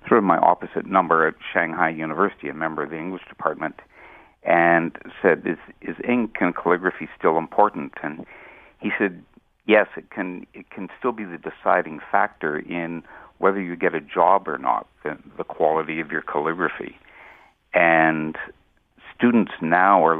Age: 60-79